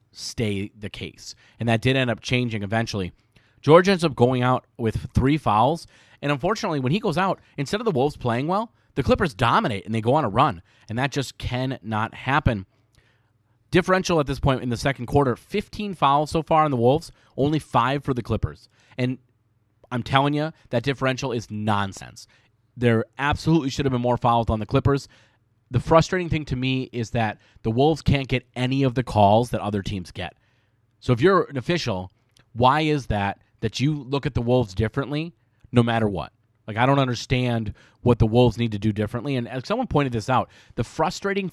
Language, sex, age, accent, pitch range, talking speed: English, male, 30-49, American, 115-140 Hz, 200 wpm